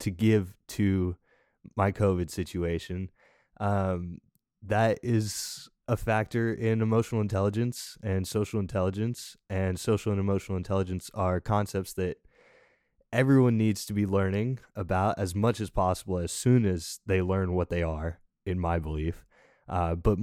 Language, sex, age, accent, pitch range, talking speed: English, male, 20-39, American, 85-105 Hz, 140 wpm